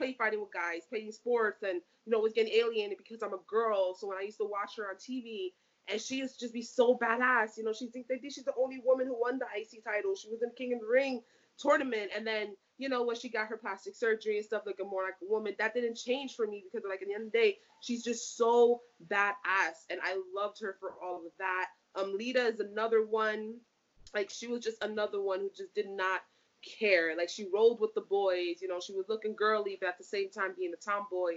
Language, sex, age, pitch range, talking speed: English, female, 20-39, 195-245 Hz, 250 wpm